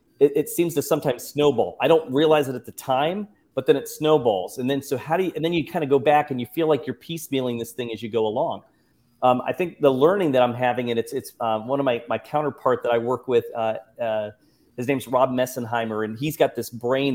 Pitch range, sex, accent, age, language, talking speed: 120-145 Hz, male, American, 40-59, English, 260 wpm